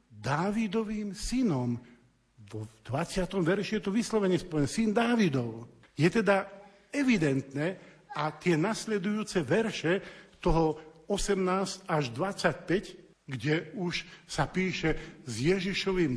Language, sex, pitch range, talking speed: Slovak, male, 140-205 Hz, 105 wpm